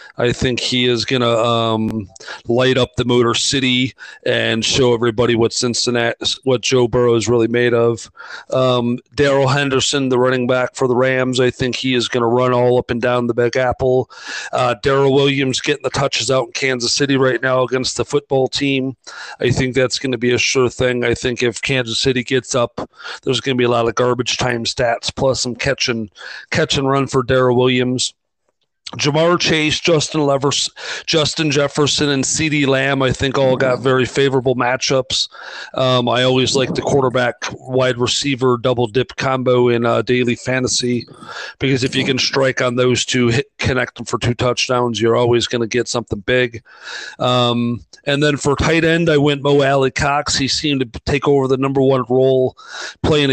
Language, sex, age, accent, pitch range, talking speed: English, male, 40-59, American, 120-135 Hz, 190 wpm